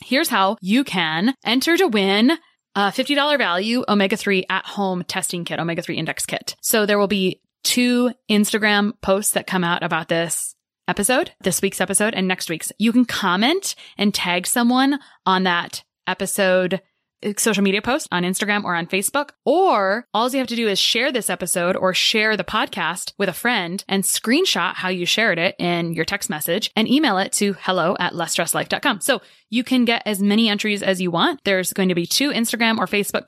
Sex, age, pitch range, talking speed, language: female, 20-39, 180-235 Hz, 190 wpm, English